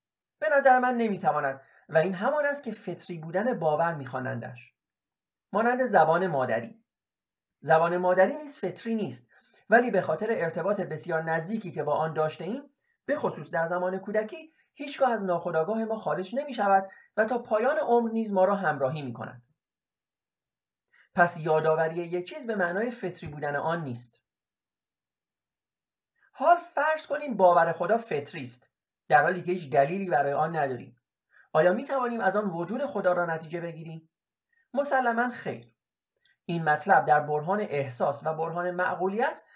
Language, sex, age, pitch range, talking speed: Persian, male, 40-59, 155-225 Hz, 145 wpm